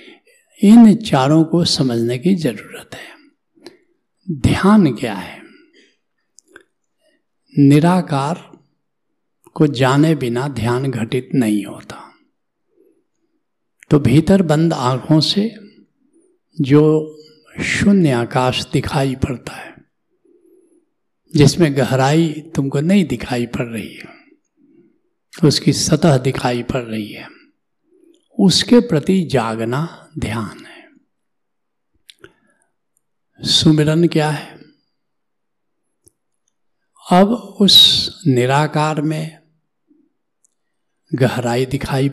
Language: Hindi